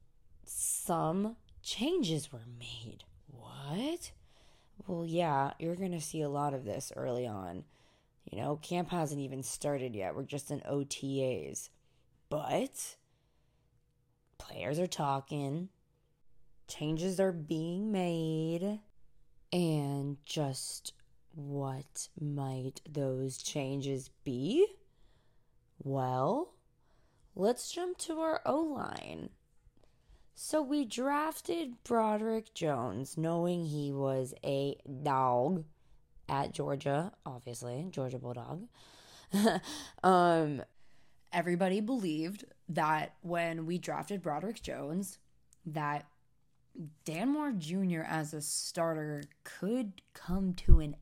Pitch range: 135-185 Hz